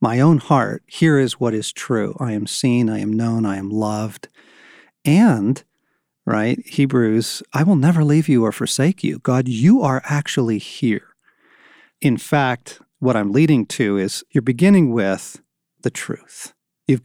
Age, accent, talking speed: 50-69, American, 160 wpm